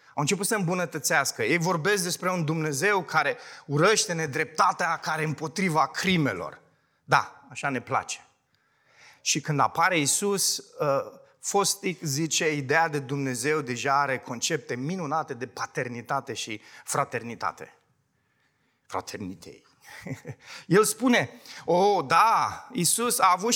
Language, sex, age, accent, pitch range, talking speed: Romanian, male, 30-49, native, 145-200 Hz, 110 wpm